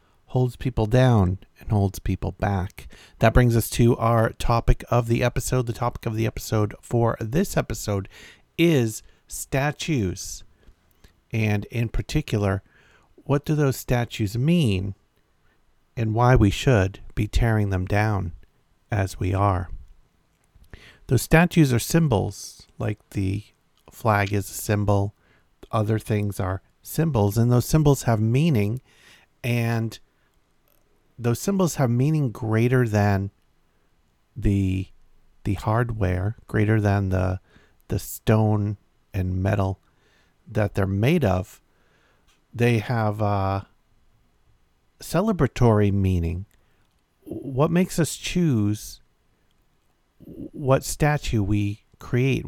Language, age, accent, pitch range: English, 50-69, American, 95-120 Hz